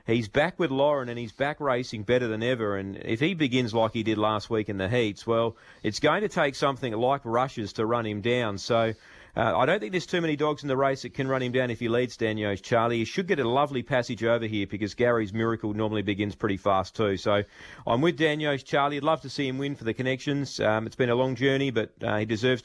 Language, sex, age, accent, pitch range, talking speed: English, male, 40-59, Australian, 110-135 Hz, 255 wpm